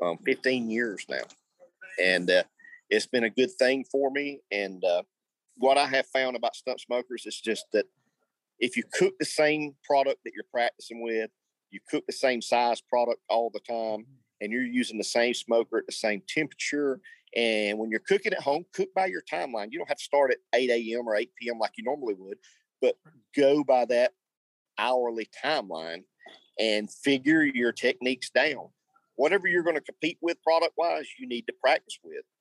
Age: 50-69